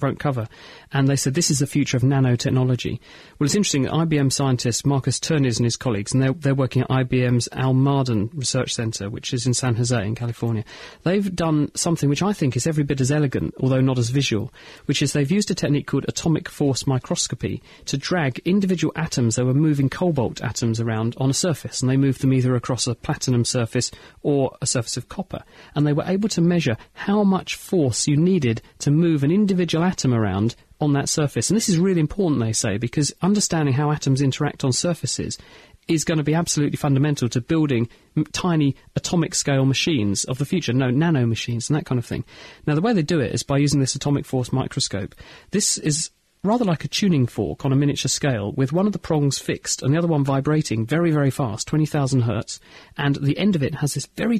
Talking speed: 215 wpm